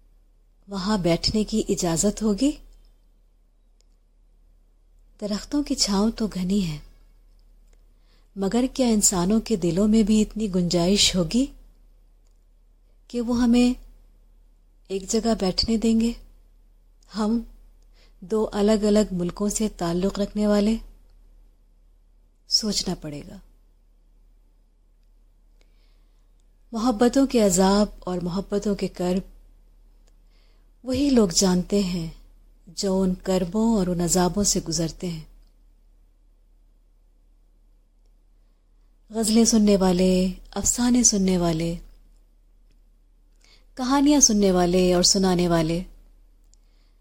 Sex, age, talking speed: female, 30-49, 90 wpm